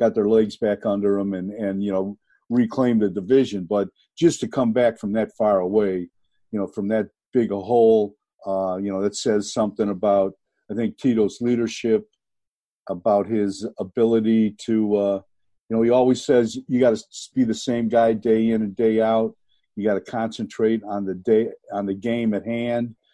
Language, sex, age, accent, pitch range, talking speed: English, male, 50-69, American, 105-120 Hz, 190 wpm